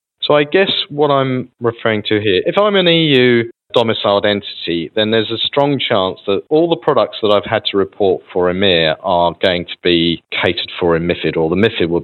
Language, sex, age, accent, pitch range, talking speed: English, male, 40-59, British, 95-120 Hz, 210 wpm